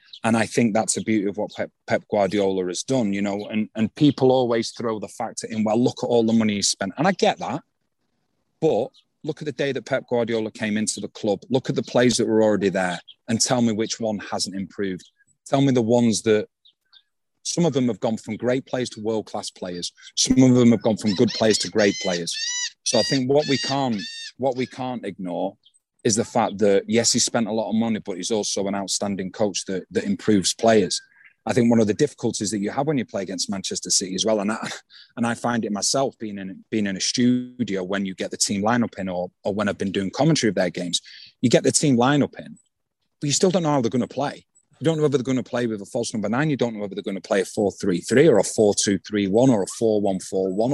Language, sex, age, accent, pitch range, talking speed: English, male, 30-49, British, 105-130 Hz, 260 wpm